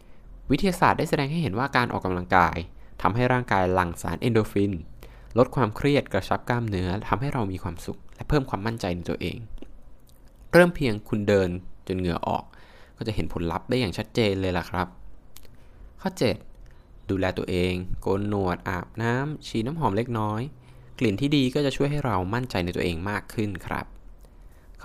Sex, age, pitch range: male, 20-39, 90-120 Hz